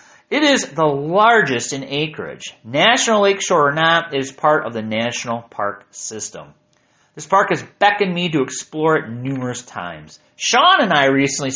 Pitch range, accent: 125-170 Hz, American